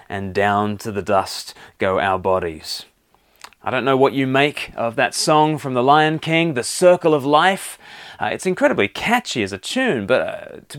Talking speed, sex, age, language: 195 wpm, male, 30-49, English